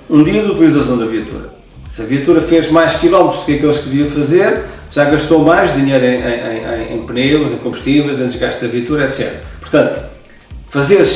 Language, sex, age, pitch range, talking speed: Portuguese, male, 40-59, 125-155 Hz, 195 wpm